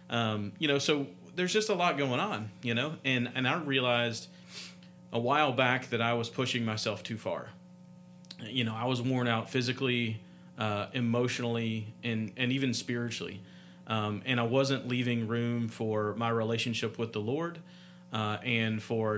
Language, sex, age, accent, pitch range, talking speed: English, male, 40-59, American, 110-135 Hz, 170 wpm